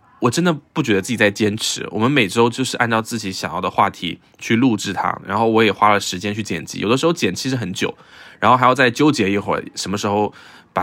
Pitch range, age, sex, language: 100-130 Hz, 20-39, male, Chinese